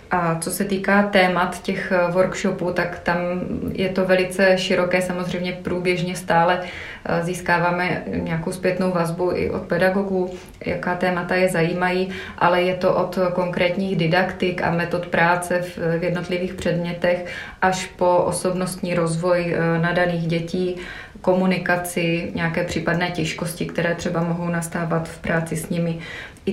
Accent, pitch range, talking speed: native, 170-185 Hz, 130 wpm